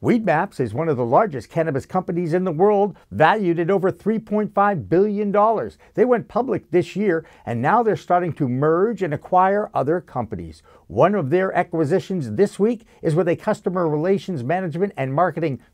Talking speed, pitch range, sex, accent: 175 wpm, 135-195 Hz, male, American